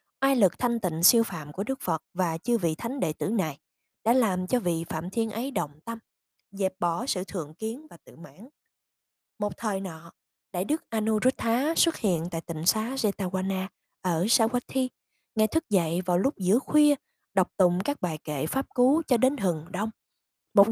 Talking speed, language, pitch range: 190 wpm, Vietnamese, 180-255 Hz